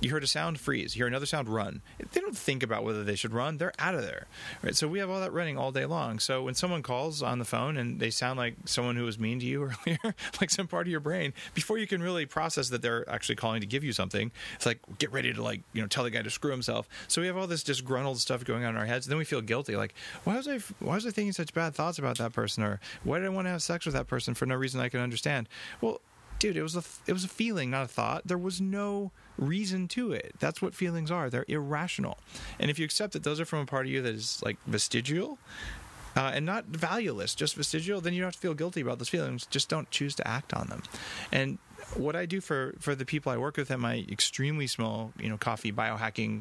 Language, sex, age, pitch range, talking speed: English, male, 30-49, 115-165 Hz, 275 wpm